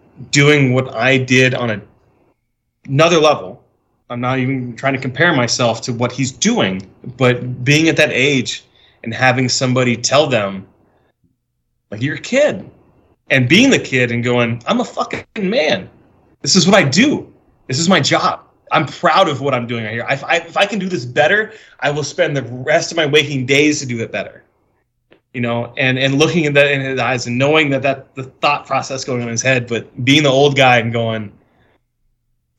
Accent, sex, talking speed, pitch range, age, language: American, male, 200 wpm, 120-145 Hz, 30-49, English